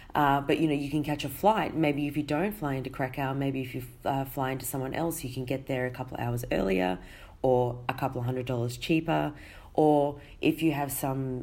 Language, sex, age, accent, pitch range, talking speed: English, female, 20-39, Australian, 125-150 Hz, 235 wpm